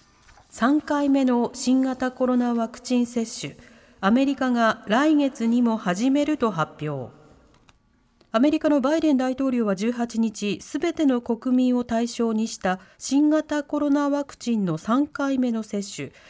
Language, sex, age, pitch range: Japanese, female, 40-59, 200-280 Hz